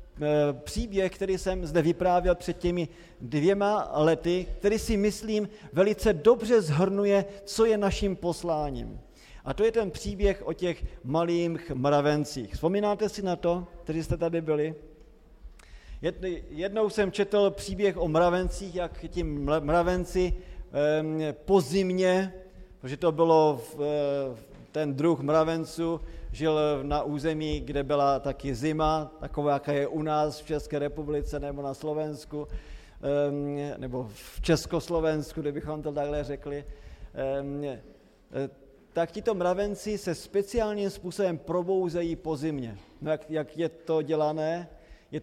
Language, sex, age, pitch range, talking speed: Slovak, male, 40-59, 150-185 Hz, 125 wpm